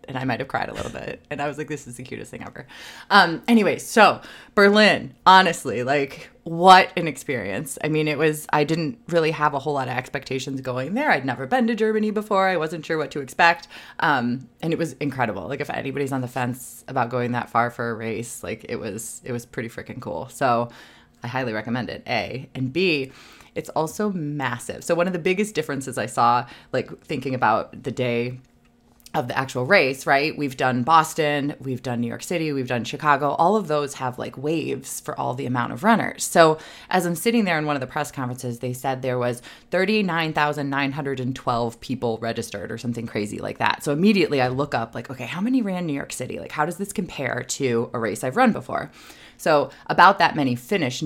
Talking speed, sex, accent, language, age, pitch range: 215 wpm, female, American, English, 20-39, 125-175 Hz